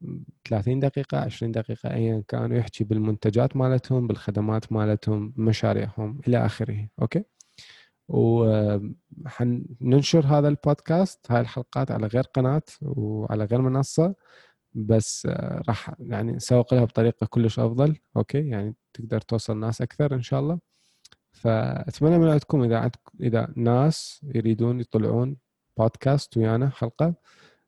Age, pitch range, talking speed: 20-39, 110-135 Hz, 115 wpm